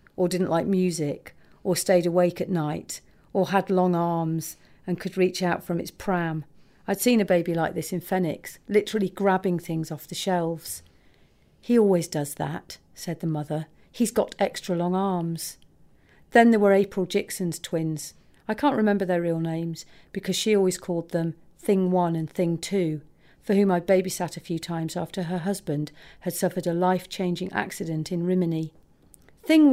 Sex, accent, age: female, British, 40-59